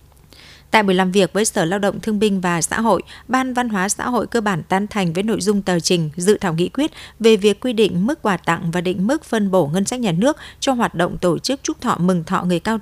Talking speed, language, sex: 270 wpm, Vietnamese, female